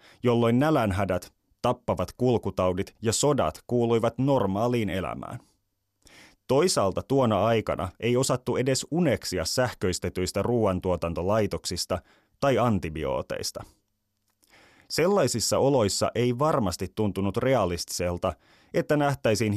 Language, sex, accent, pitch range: Finnish, male, native, 95-120 Hz